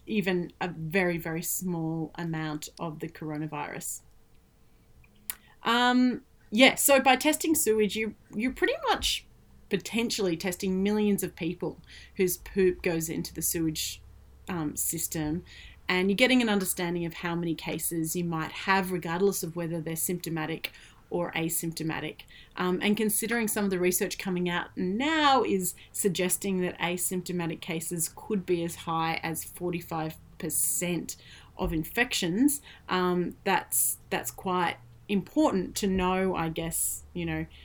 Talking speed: 135 wpm